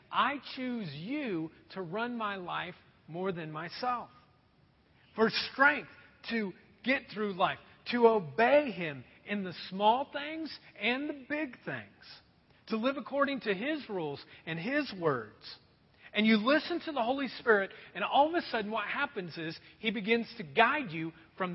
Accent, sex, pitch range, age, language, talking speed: American, male, 190-270 Hz, 40-59, English, 160 wpm